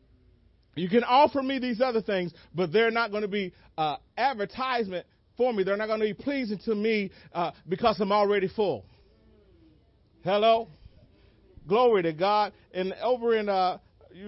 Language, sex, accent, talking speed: English, male, American, 165 wpm